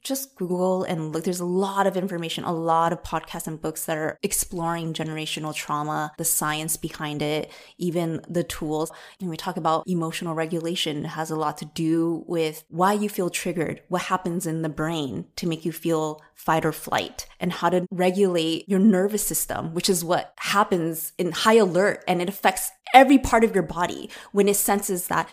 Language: English